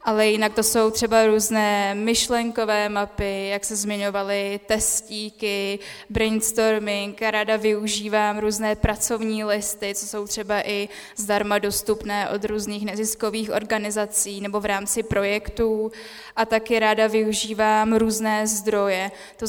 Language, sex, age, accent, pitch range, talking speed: Czech, female, 10-29, native, 205-220 Hz, 120 wpm